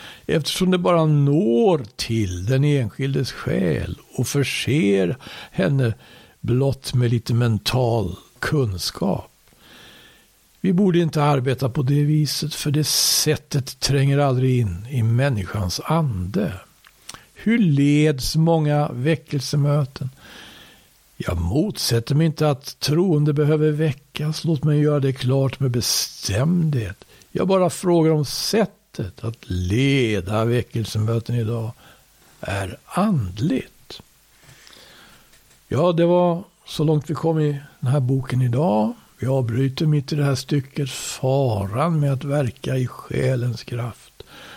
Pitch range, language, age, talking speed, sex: 115-150 Hz, Swedish, 60-79, 120 wpm, male